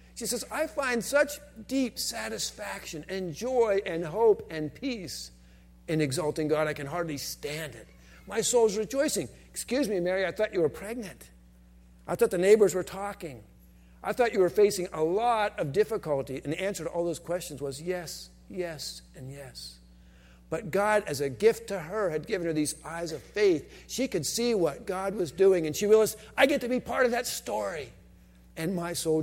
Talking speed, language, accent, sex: 195 wpm, English, American, male